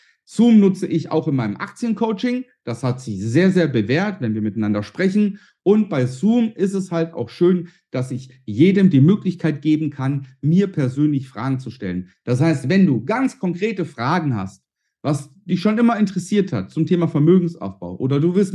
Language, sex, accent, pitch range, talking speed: German, male, German, 140-210 Hz, 185 wpm